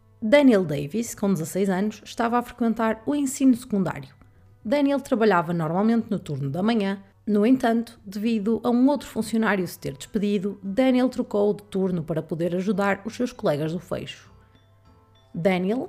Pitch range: 175-245 Hz